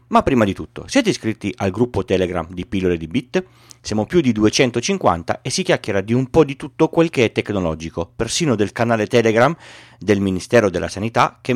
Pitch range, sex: 95-125 Hz, male